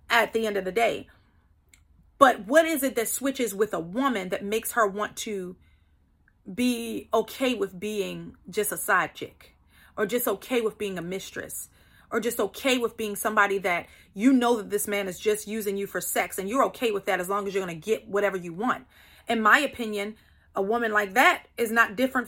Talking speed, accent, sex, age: 205 wpm, American, female, 30-49